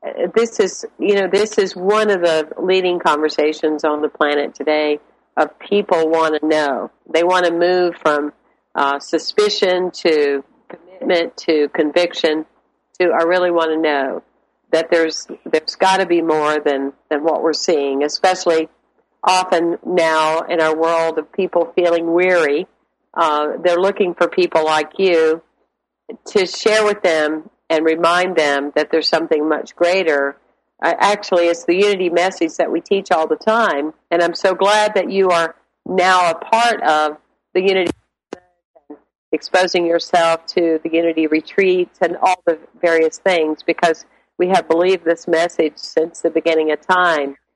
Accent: American